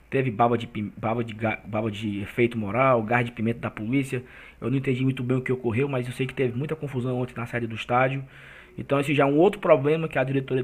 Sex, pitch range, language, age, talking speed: male, 120-140 Hz, Portuguese, 20-39, 250 wpm